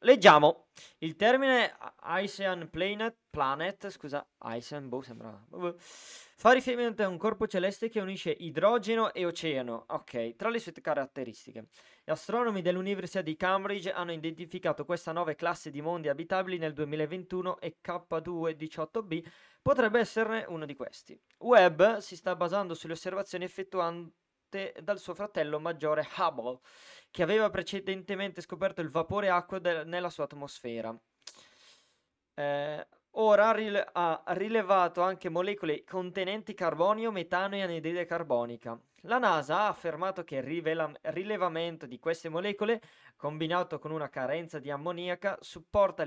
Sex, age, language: male, 20-39, Italian